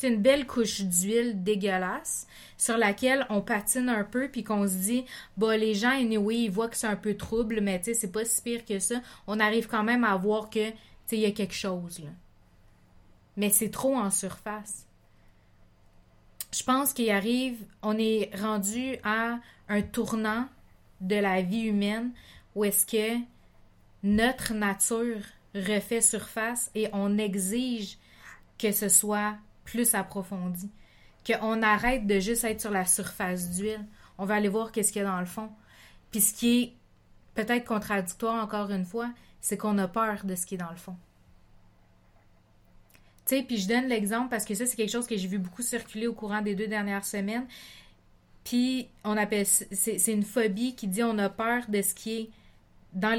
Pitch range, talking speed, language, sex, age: 195-230 Hz, 190 wpm, French, female, 30-49